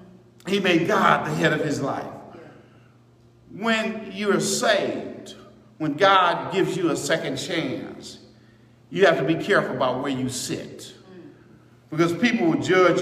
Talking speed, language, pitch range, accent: 145 wpm, English, 170-215 Hz, American